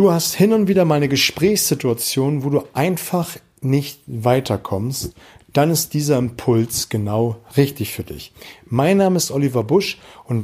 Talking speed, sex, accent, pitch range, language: 155 wpm, male, German, 115-140 Hz, German